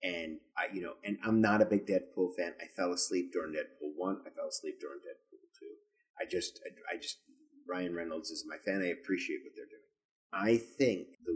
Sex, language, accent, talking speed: male, English, American, 210 wpm